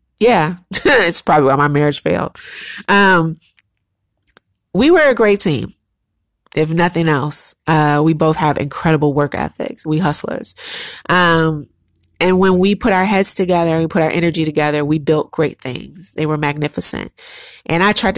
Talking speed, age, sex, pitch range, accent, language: 160 wpm, 30-49, female, 155-210 Hz, American, English